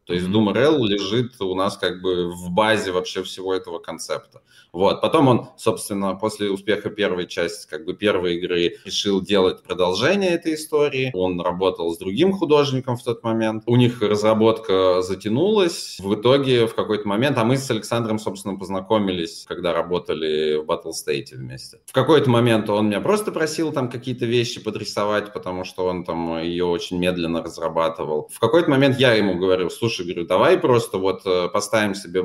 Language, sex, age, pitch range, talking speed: Russian, male, 20-39, 90-120 Hz, 175 wpm